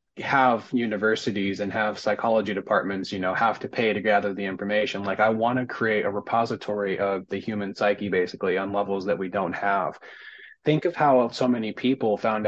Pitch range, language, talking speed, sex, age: 100-125 Hz, English, 190 wpm, male, 30-49